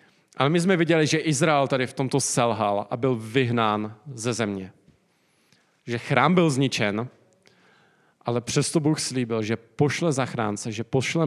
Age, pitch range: 40-59, 115-150 Hz